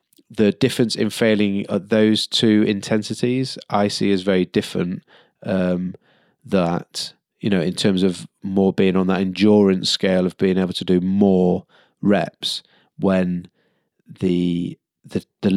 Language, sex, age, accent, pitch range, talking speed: English, male, 20-39, British, 90-100 Hz, 145 wpm